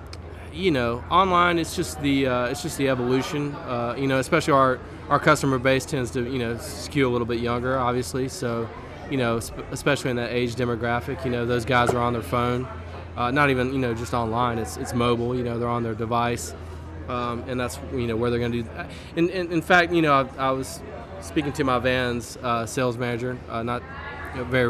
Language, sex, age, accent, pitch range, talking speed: English, male, 20-39, American, 115-135 Hz, 220 wpm